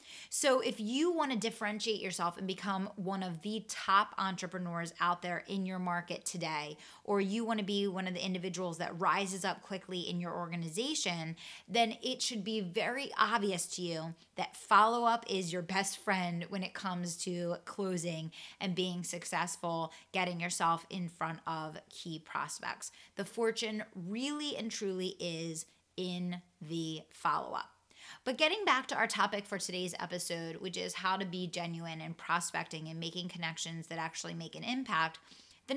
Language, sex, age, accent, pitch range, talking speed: English, female, 20-39, American, 170-220 Hz, 170 wpm